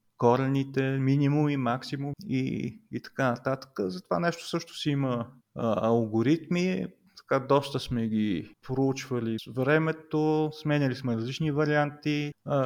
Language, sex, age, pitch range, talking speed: Bulgarian, male, 30-49, 125-155 Hz, 130 wpm